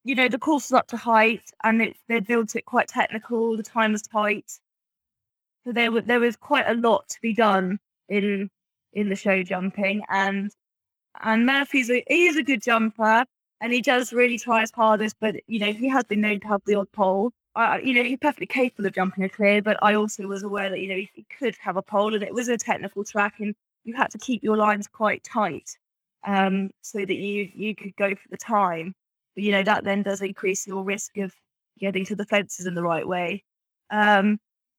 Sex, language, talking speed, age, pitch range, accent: female, English, 225 wpm, 10-29, 195-230 Hz, British